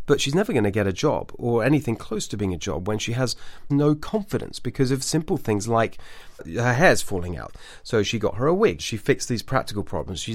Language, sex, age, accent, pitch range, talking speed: English, male, 30-49, British, 105-140 Hz, 240 wpm